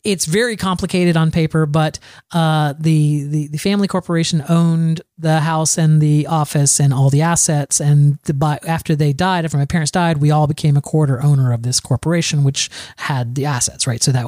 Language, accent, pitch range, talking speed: English, American, 140-175 Hz, 200 wpm